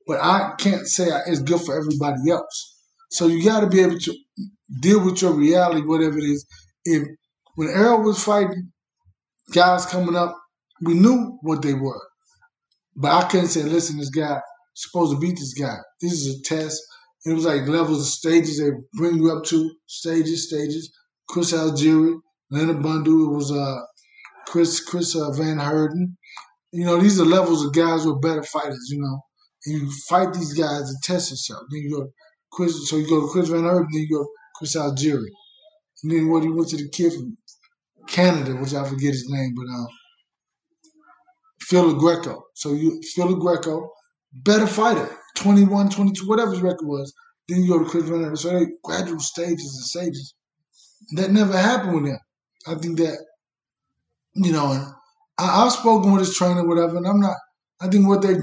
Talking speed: 190 wpm